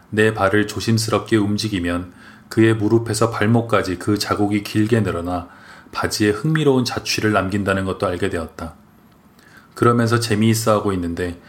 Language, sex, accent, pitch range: Korean, male, native, 95-115 Hz